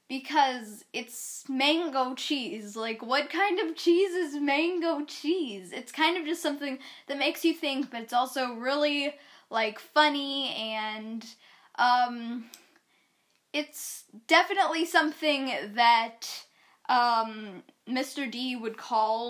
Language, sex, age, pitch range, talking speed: English, female, 10-29, 235-300 Hz, 120 wpm